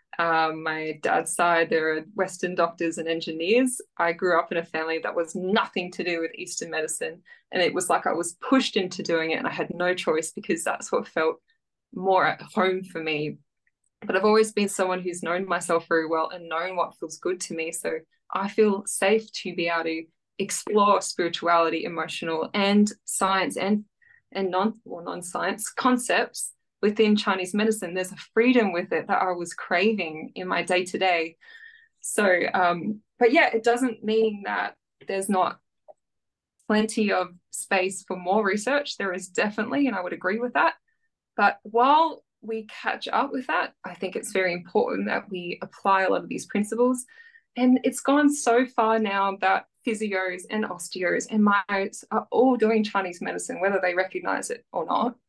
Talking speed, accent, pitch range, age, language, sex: 180 wpm, Australian, 175-230 Hz, 20-39, English, female